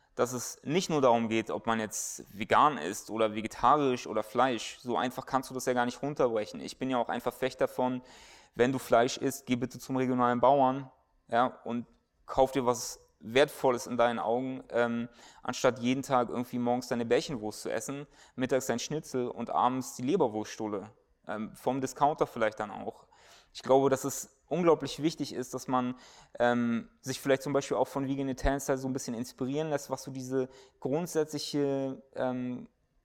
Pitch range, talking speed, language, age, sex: 125-145 Hz, 180 wpm, German, 20-39, male